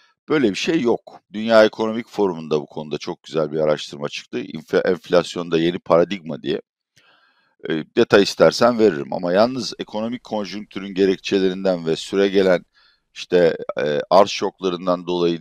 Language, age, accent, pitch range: Turkish, 60-79, native, 90-110 Hz